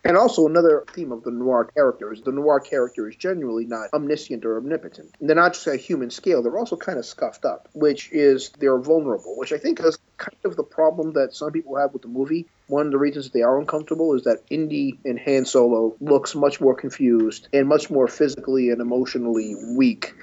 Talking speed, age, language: 215 wpm, 30-49, English